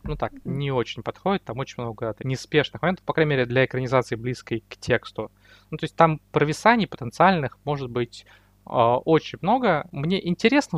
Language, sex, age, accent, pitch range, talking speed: Russian, male, 20-39, native, 110-140 Hz, 175 wpm